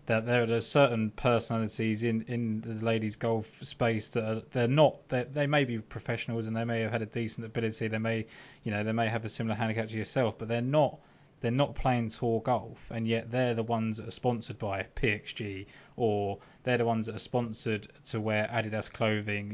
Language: English